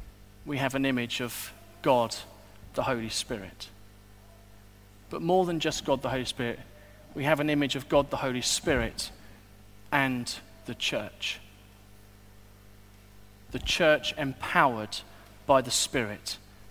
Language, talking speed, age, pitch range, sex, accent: English, 125 wpm, 40-59, 100-125 Hz, male, British